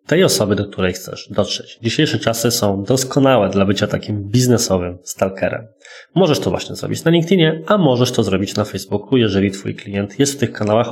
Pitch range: 105-145 Hz